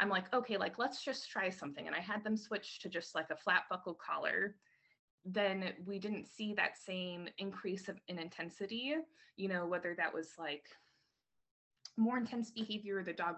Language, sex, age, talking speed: English, female, 20-39, 185 wpm